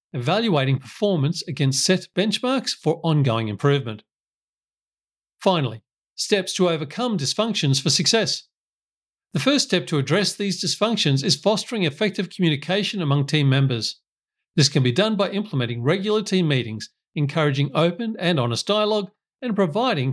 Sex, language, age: male, English, 50-69